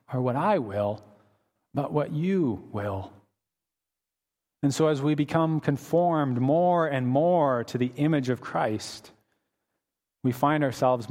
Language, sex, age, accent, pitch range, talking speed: English, male, 40-59, American, 110-150 Hz, 135 wpm